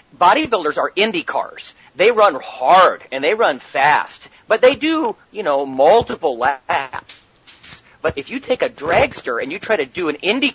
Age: 40-59